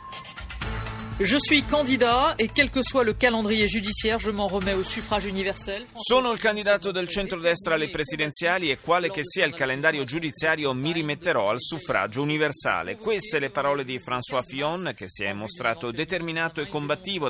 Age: 30-49